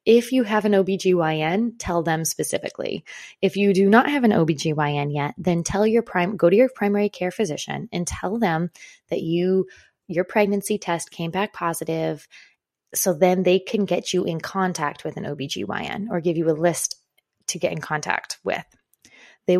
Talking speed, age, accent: 180 wpm, 20-39, American